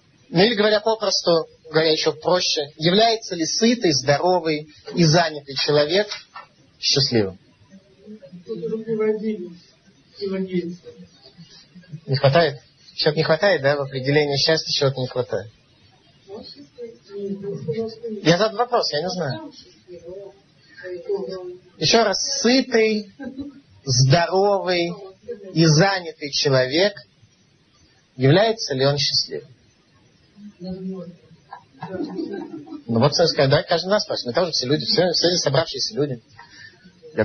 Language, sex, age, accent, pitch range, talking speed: Russian, male, 30-49, native, 140-200 Hz, 95 wpm